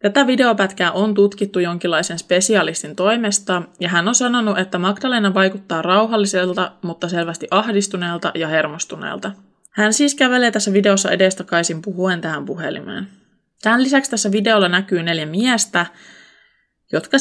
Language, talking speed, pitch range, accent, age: Finnish, 130 wpm, 175-210 Hz, native, 20-39